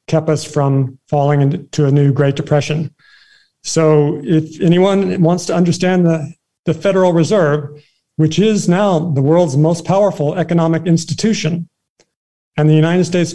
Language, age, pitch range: English, 50-69, 150-170 Hz